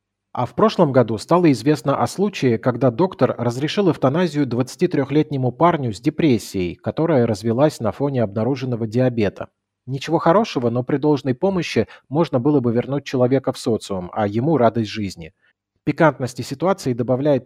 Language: Russian